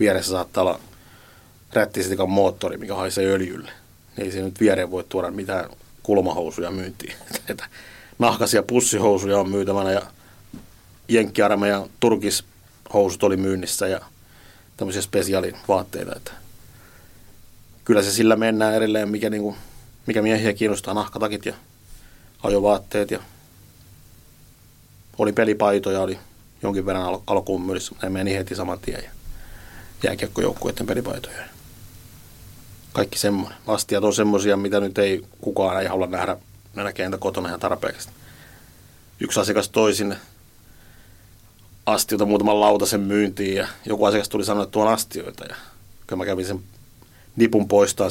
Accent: native